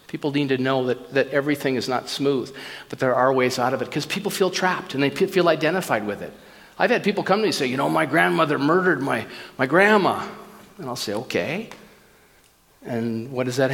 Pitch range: 135-190 Hz